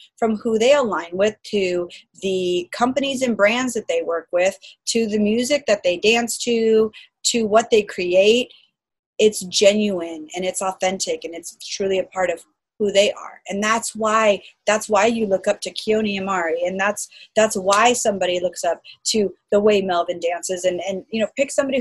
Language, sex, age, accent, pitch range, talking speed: English, female, 30-49, American, 185-225 Hz, 185 wpm